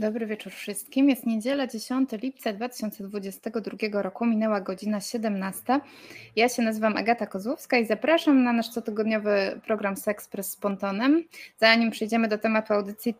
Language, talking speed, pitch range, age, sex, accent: Polish, 145 wpm, 205-245 Hz, 20-39, female, native